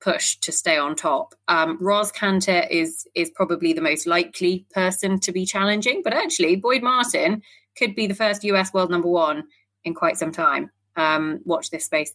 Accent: British